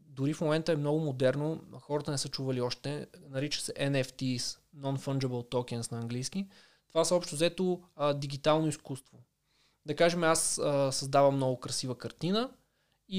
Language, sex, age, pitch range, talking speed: Bulgarian, male, 20-39, 135-165 Hz, 150 wpm